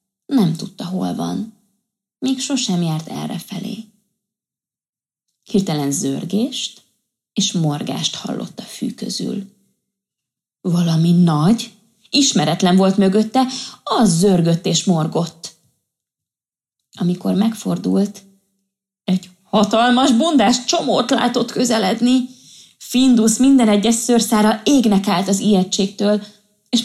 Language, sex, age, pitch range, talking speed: Hungarian, female, 20-39, 185-235 Hz, 95 wpm